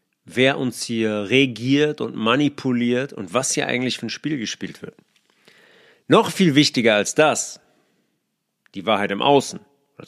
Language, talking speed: German, 150 wpm